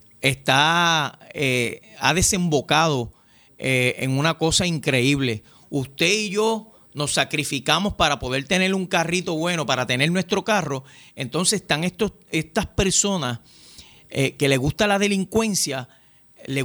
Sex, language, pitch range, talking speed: male, Spanish, 145-195 Hz, 130 wpm